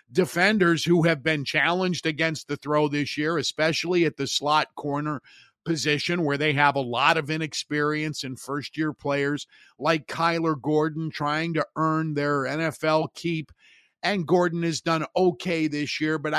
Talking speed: 155 wpm